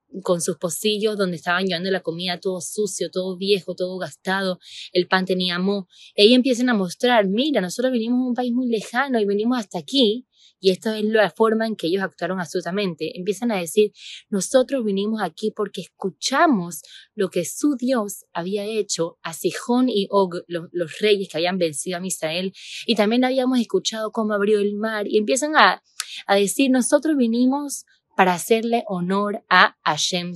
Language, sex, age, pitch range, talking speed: Spanish, female, 20-39, 175-230 Hz, 180 wpm